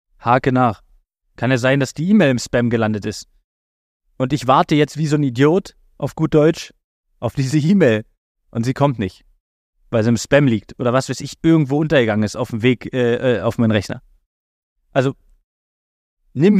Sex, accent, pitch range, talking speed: male, German, 100-140 Hz, 190 wpm